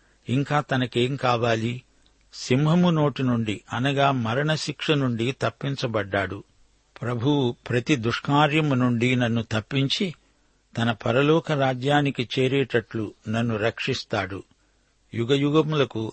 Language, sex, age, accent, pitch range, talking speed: Telugu, male, 60-79, native, 115-140 Hz, 90 wpm